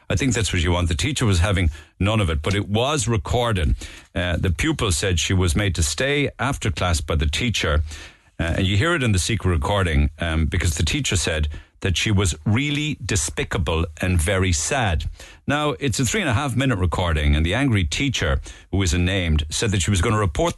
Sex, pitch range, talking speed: male, 85-115 Hz, 220 wpm